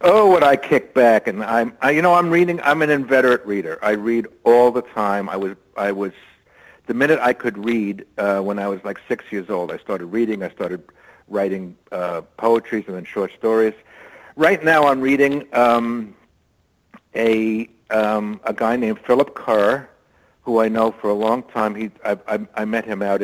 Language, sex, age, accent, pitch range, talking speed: English, male, 50-69, American, 95-115 Hz, 195 wpm